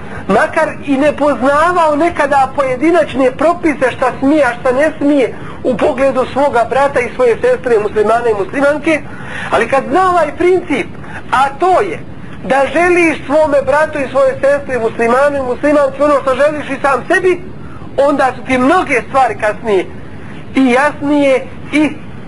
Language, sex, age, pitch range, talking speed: English, male, 40-59, 230-295 Hz, 150 wpm